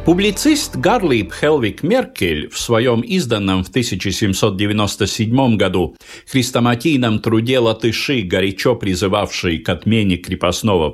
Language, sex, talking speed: Russian, male, 100 wpm